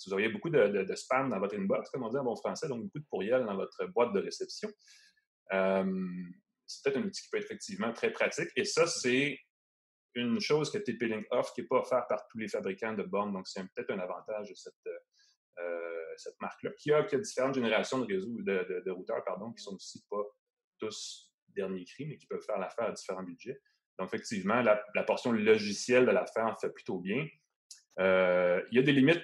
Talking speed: 230 wpm